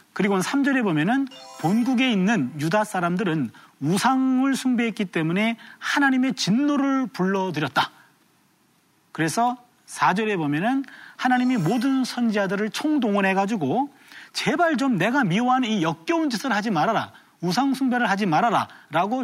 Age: 40-59